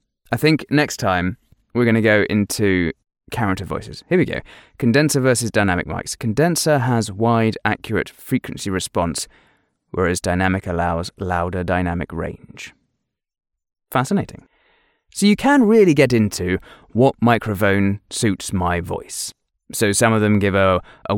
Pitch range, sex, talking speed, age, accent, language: 95-130 Hz, male, 140 wpm, 20-39, British, English